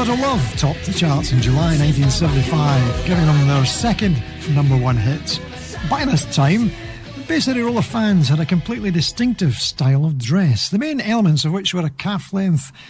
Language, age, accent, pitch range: English, 60-79, British, 140-195 Hz